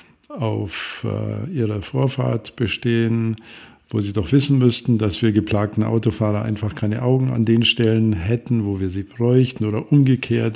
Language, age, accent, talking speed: German, 50-69, German, 155 wpm